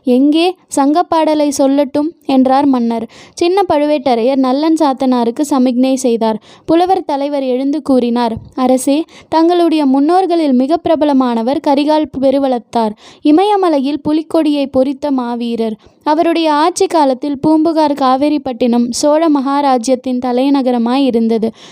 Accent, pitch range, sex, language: native, 255-310 Hz, female, Tamil